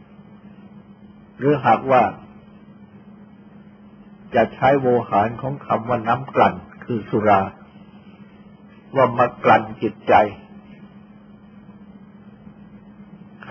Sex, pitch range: male, 125-205 Hz